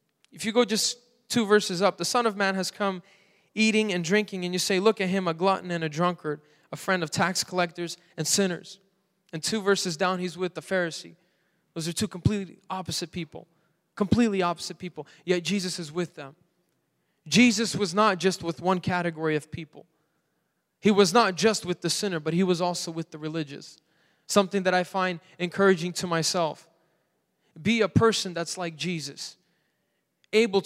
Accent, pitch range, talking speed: American, 170-200 Hz, 180 wpm